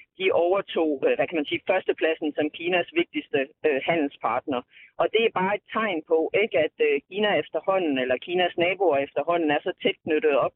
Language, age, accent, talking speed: Danish, 30-49, native, 175 wpm